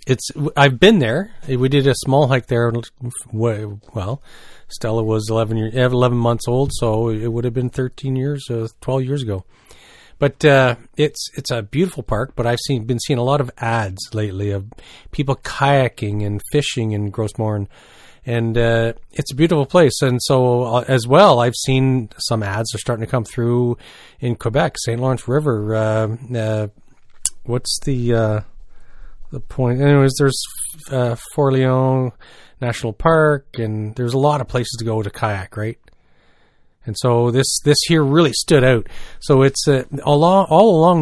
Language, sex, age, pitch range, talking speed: English, male, 40-59, 115-140 Hz, 170 wpm